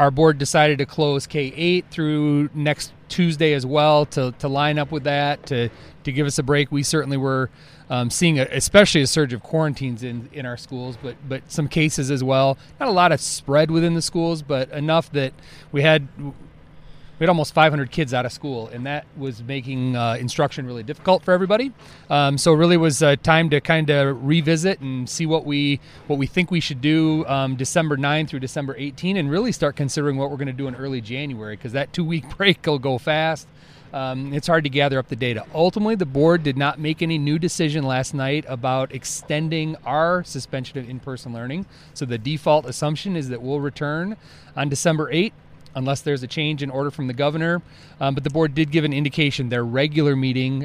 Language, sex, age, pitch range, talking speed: English, male, 30-49, 135-155 Hz, 210 wpm